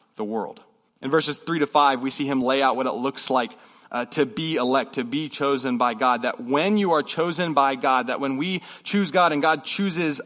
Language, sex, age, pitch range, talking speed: English, male, 30-49, 140-175 Hz, 235 wpm